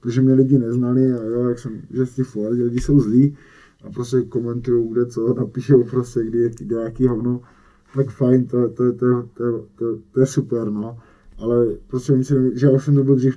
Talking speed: 205 wpm